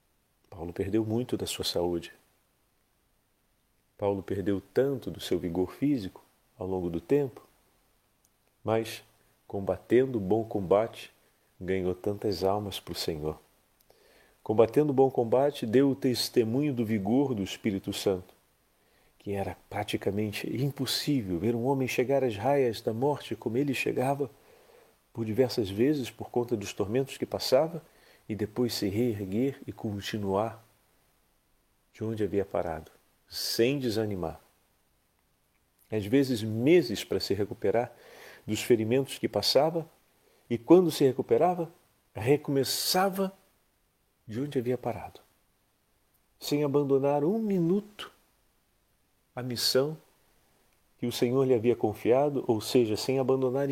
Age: 40-59